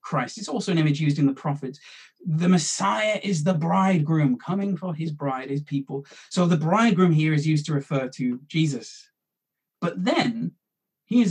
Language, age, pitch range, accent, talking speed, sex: English, 30-49, 145-200 Hz, British, 175 wpm, male